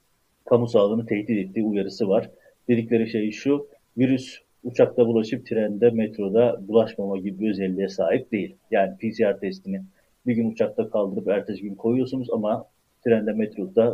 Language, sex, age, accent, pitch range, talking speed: Turkish, male, 50-69, native, 105-125 Hz, 140 wpm